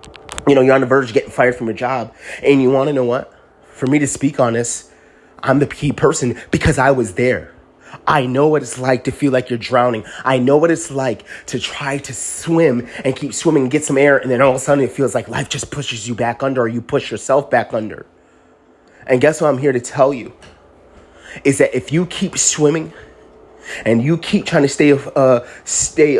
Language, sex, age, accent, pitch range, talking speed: English, male, 30-49, American, 115-145 Hz, 230 wpm